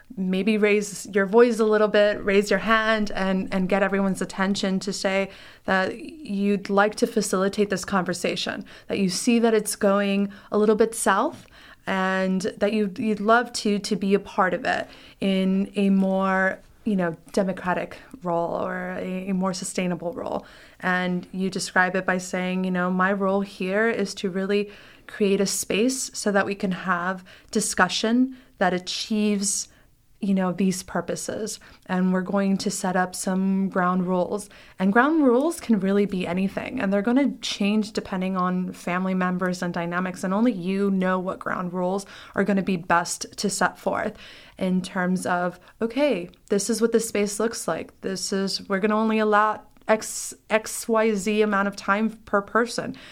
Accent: American